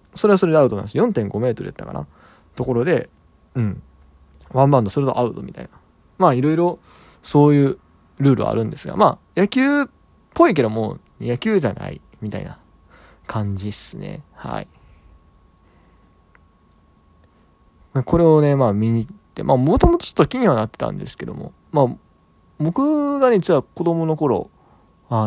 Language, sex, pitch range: Japanese, male, 100-160 Hz